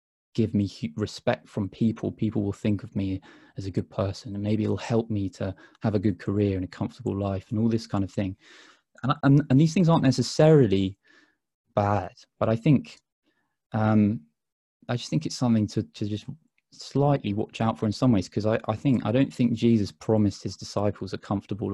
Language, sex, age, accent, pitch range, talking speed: English, male, 20-39, British, 100-120 Hz, 200 wpm